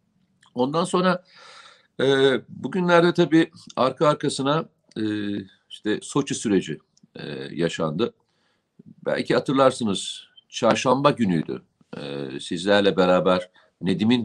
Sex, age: male, 50-69